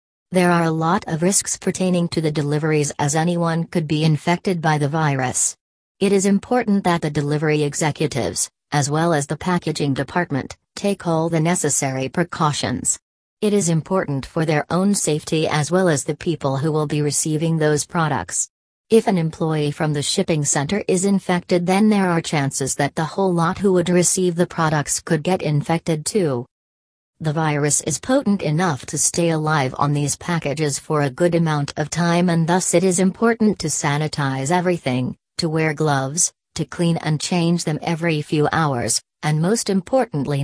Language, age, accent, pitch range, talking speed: English, 40-59, American, 145-175 Hz, 175 wpm